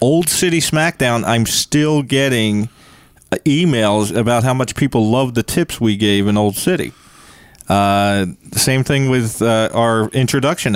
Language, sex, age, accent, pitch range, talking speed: English, male, 40-59, American, 115-160 Hz, 145 wpm